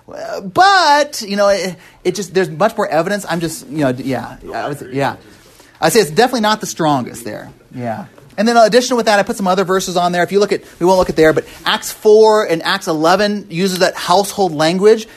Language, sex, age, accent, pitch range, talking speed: English, male, 30-49, American, 130-200 Hz, 235 wpm